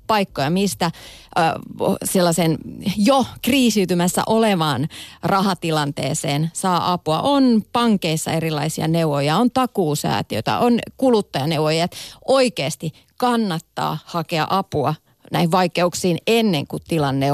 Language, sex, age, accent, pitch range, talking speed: Finnish, female, 30-49, native, 165-235 Hz, 95 wpm